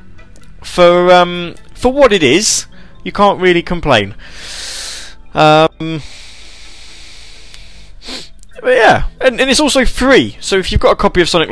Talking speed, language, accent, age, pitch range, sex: 135 wpm, English, British, 20-39, 105-150 Hz, male